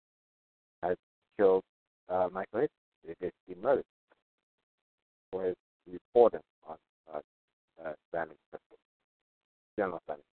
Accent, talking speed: American, 80 wpm